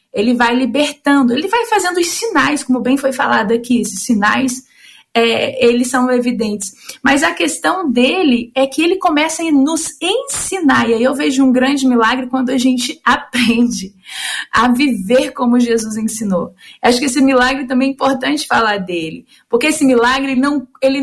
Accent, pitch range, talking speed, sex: Brazilian, 235-280 Hz, 165 wpm, female